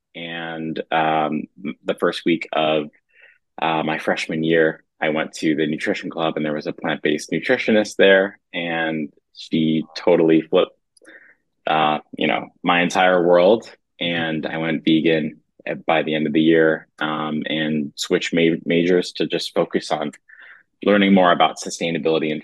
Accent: American